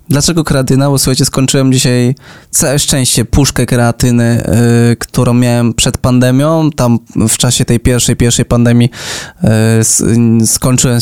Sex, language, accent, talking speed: male, Polish, native, 120 wpm